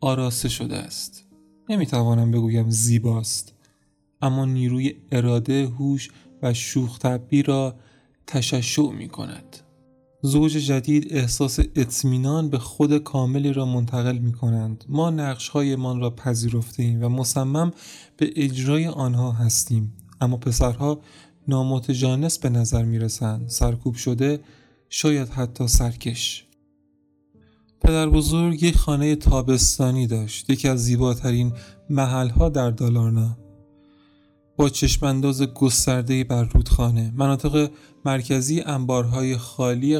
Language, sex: Persian, male